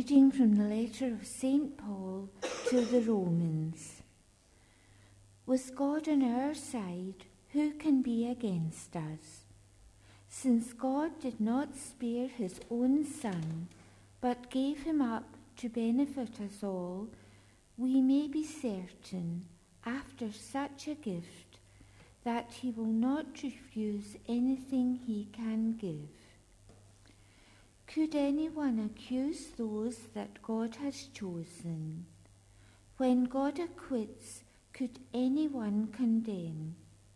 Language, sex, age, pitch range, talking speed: English, female, 60-79, 155-260 Hz, 110 wpm